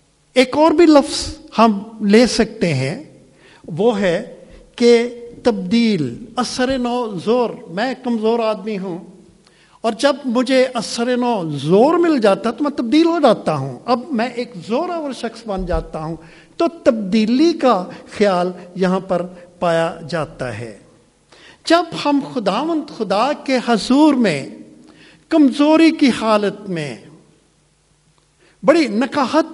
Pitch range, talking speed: 180-265 Hz, 125 wpm